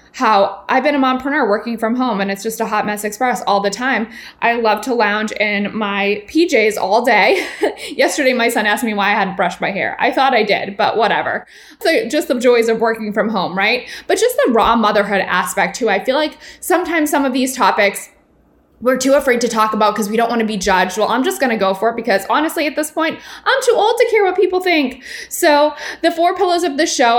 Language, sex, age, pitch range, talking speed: English, female, 20-39, 215-280 Hz, 240 wpm